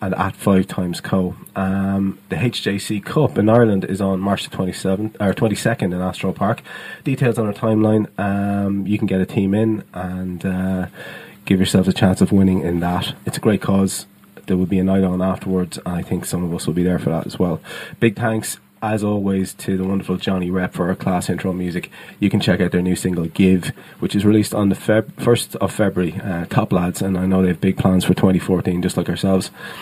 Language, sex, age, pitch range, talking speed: English, male, 20-39, 95-105 Hz, 220 wpm